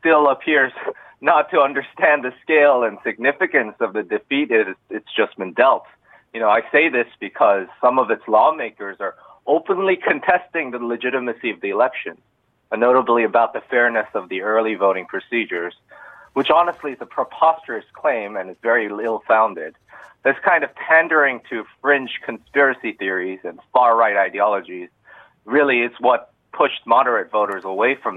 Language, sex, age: Korean, male, 30-49